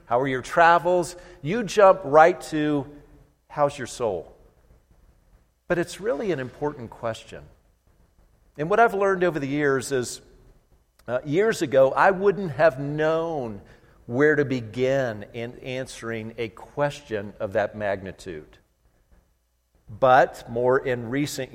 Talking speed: 130 wpm